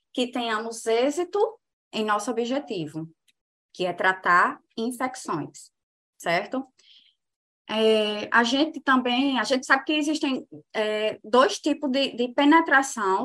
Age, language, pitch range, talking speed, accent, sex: 20-39, Portuguese, 210-275 Hz, 120 wpm, Brazilian, female